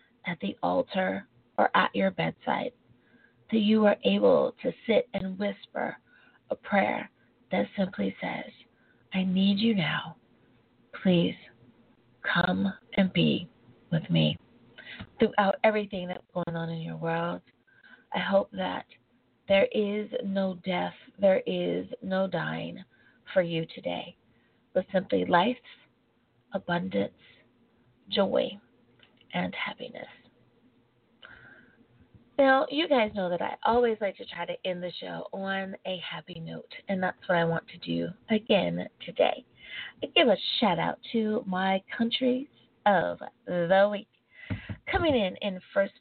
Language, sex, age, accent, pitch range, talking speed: English, female, 30-49, American, 175-215 Hz, 130 wpm